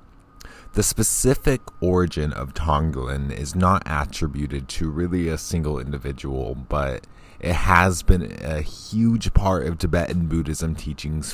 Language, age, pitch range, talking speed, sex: English, 20-39, 75-95 Hz, 125 wpm, male